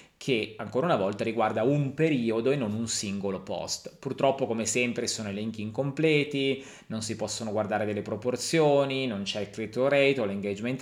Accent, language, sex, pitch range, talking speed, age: native, Italian, male, 110-135 Hz, 170 wpm, 30-49